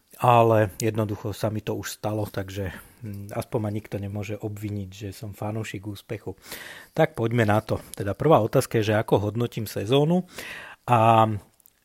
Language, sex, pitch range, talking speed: Slovak, male, 105-120 Hz, 150 wpm